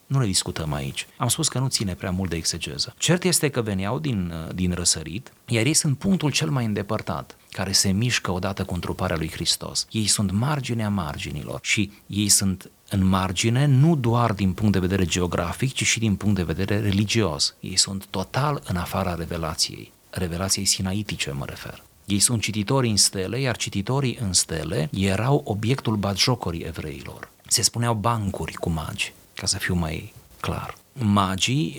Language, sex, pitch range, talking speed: Romanian, male, 95-125 Hz, 175 wpm